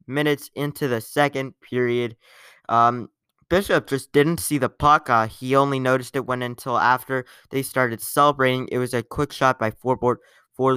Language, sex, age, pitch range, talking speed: English, male, 20-39, 120-140 Hz, 185 wpm